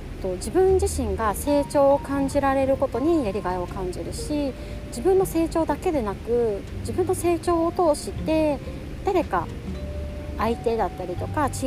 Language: Japanese